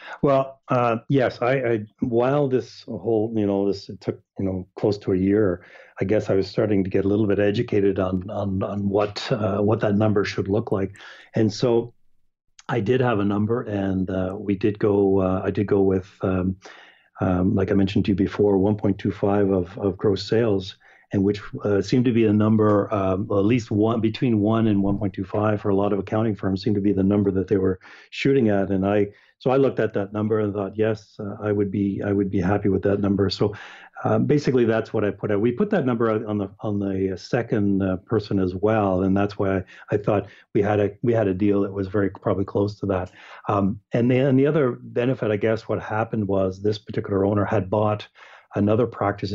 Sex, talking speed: male, 230 wpm